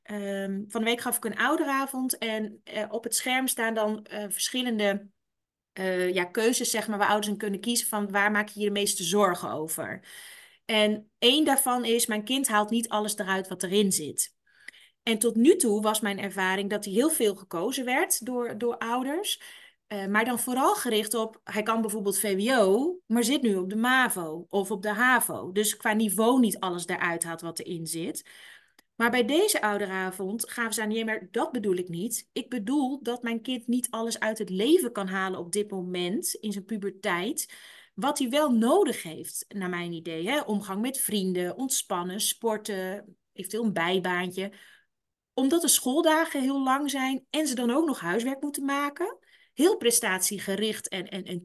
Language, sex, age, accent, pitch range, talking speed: Dutch, female, 30-49, Dutch, 200-260 Hz, 185 wpm